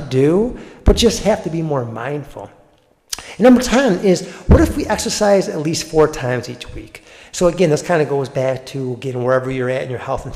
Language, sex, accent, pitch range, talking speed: English, male, American, 130-175 Hz, 220 wpm